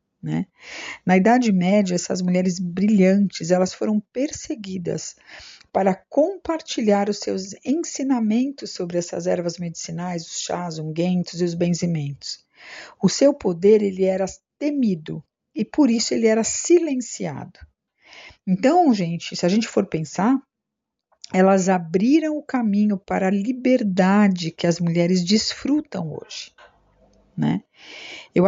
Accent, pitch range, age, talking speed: Brazilian, 180-230 Hz, 50-69, 125 wpm